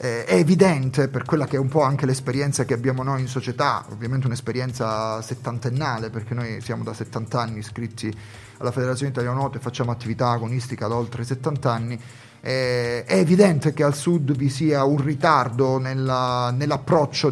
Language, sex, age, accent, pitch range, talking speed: Italian, male, 30-49, native, 125-145 Hz, 165 wpm